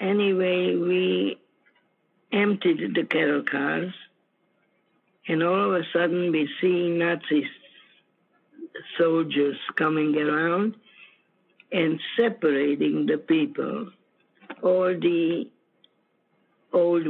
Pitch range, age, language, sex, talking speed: 155-195 Hz, 60-79, English, female, 85 wpm